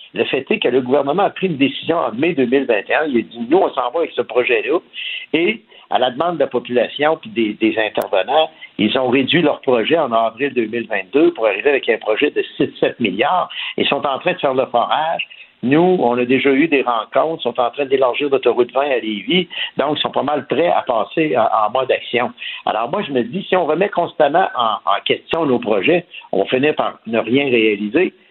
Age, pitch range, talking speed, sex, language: 60-79, 120-175 Hz, 225 wpm, male, French